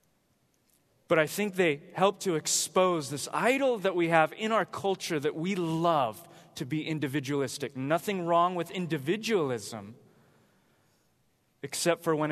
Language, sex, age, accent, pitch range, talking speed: English, male, 20-39, American, 140-180 Hz, 135 wpm